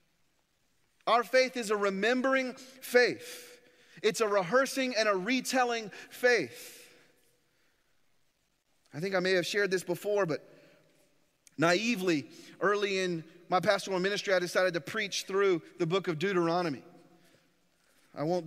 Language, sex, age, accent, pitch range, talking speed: English, male, 30-49, American, 185-265 Hz, 125 wpm